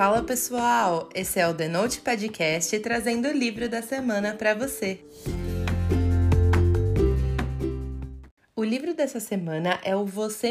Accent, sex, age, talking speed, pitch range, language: Brazilian, female, 20-39, 125 wpm, 190-250 Hz, Portuguese